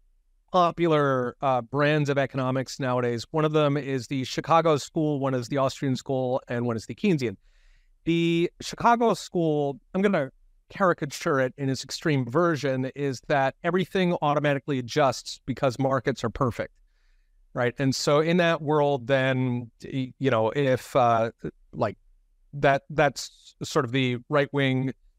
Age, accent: 30-49, American